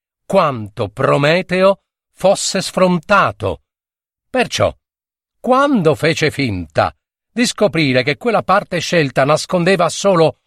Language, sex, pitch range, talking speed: Italian, male, 120-185 Hz, 90 wpm